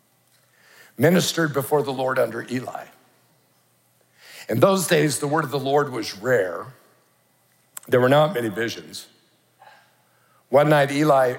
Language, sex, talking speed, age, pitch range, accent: English, male, 125 wpm, 60-79, 135-170 Hz, American